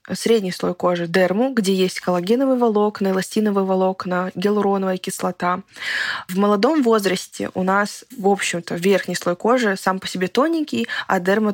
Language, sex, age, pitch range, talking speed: Russian, female, 20-39, 180-210 Hz, 145 wpm